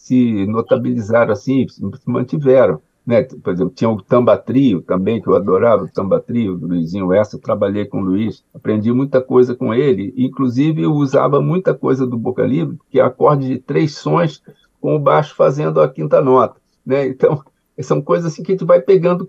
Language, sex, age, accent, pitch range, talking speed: Portuguese, male, 50-69, Brazilian, 120-170 Hz, 185 wpm